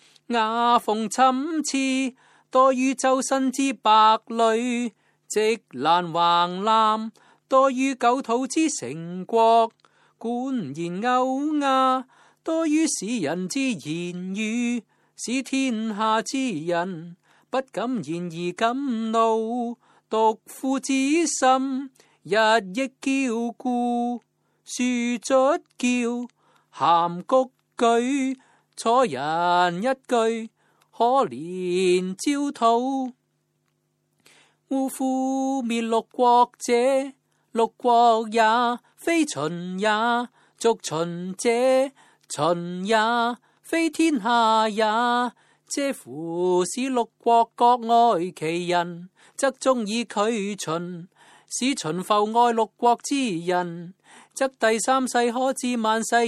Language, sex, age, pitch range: Chinese, male, 30-49, 210-260 Hz